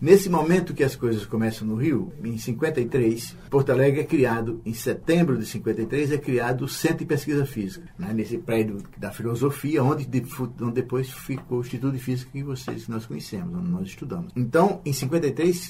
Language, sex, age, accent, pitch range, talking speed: Portuguese, male, 60-79, Brazilian, 115-160 Hz, 180 wpm